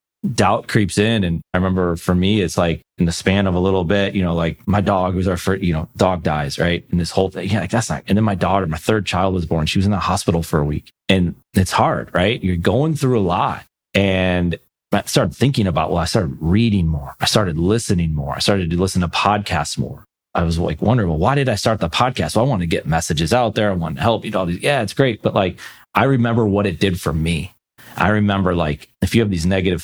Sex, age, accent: male, 30-49, American